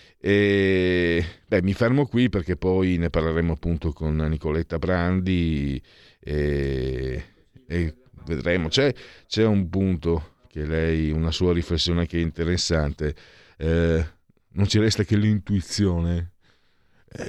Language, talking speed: Italian, 120 wpm